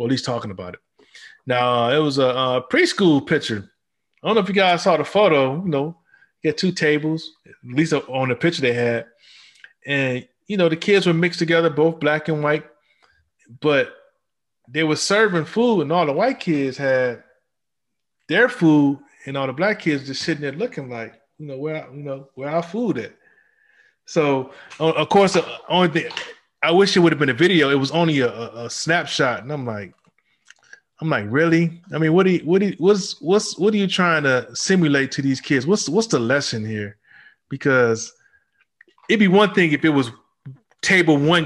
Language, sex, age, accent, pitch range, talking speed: English, male, 20-39, American, 130-185 Hz, 200 wpm